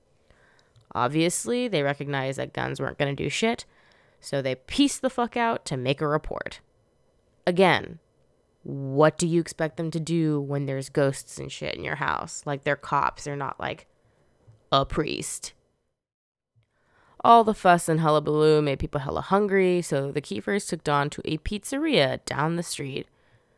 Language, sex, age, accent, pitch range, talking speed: English, female, 20-39, American, 145-190 Hz, 165 wpm